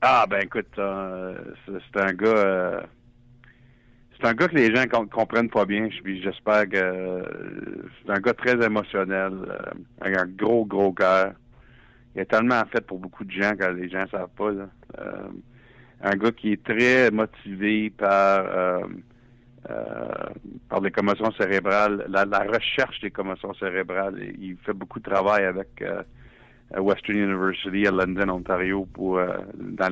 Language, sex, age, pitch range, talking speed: French, male, 60-79, 95-115 Hz, 165 wpm